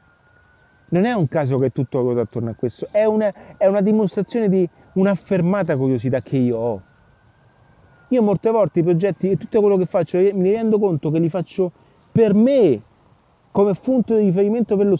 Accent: native